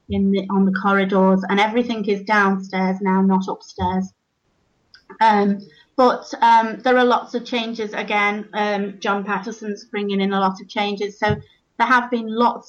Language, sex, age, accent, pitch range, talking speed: English, female, 30-49, British, 195-220 Hz, 165 wpm